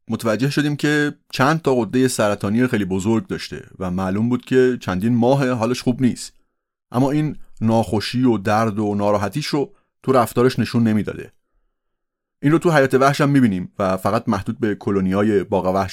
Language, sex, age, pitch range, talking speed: Persian, male, 30-49, 100-125 Hz, 170 wpm